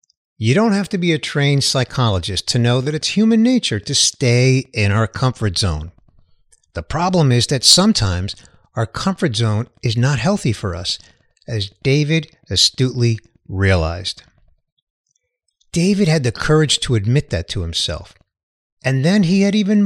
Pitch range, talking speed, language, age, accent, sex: 115-175 Hz, 155 wpm, English, 50-69, American, male